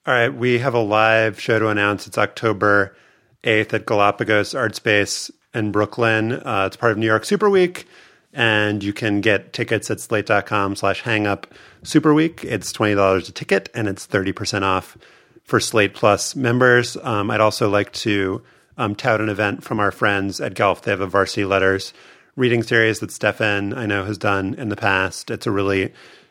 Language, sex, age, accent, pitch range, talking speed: English, male, 30-49, American, 95-115 Hz, 185 wpm